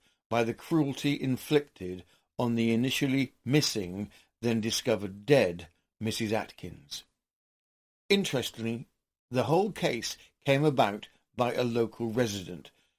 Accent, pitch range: British, 110-150 Hz